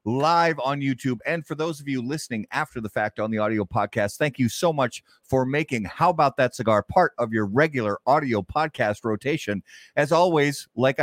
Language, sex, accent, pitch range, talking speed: English, male, American, 110-155 Hz, 195 wpm